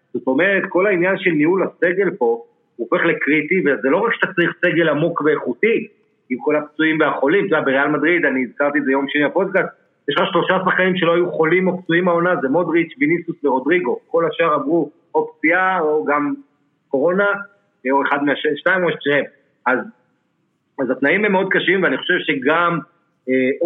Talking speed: 180 wpm